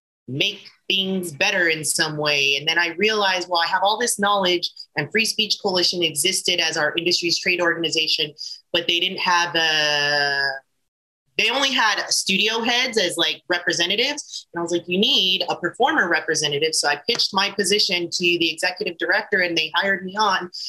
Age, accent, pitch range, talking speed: 30-49, American, 170-205 Hz, 180 wpm